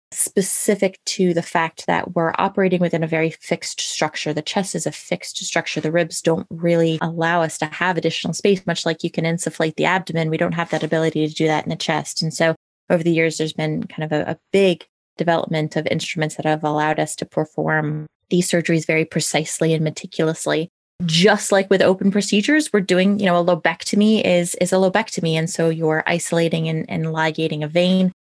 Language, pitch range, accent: English, 160-185 Hz, American